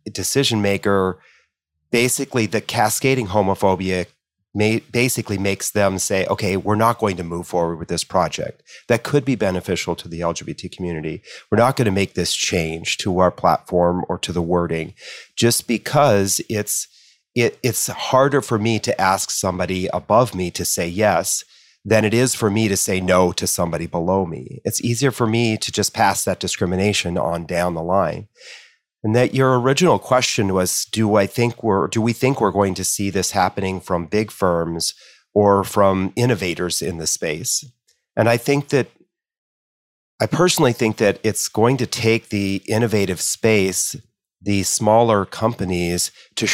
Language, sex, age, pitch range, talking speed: English, male, 40-59, 90-115 Hz, 165 wpm